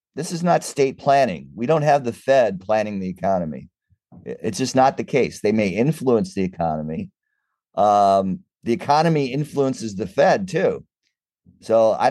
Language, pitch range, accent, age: English, 90-115 Hz, American, 50-69